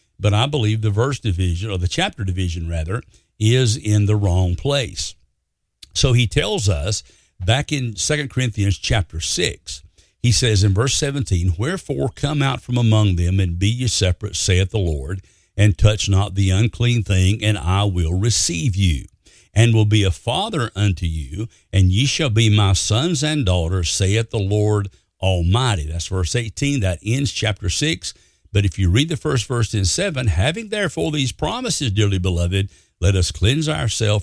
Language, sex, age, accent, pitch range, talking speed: English, male, 60-79, American, 95-120 Hz, 175 wpm